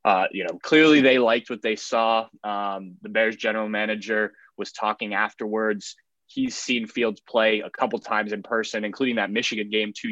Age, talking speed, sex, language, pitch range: 20-39, 185 wpm, male, English, 105-115 Hz